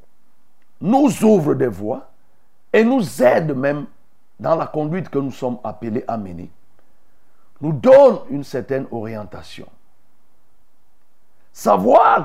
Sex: male